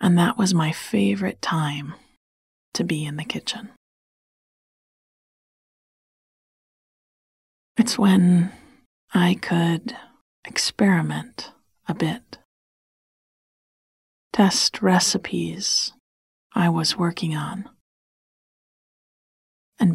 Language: English